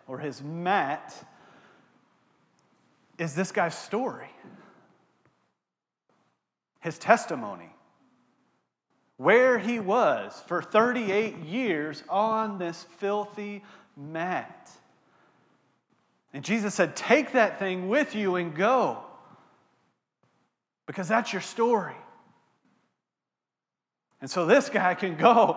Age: 30-49